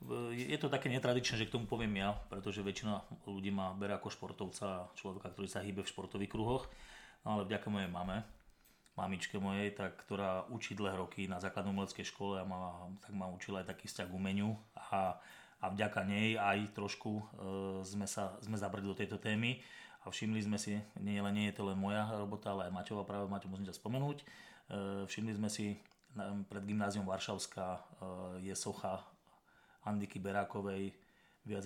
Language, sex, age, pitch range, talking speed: Slovak, male, 30-49, 100-110 Hz, 170 wpm